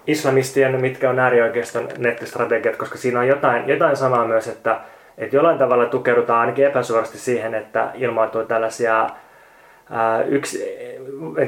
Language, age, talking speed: Finnish, 20-39, 125 wpm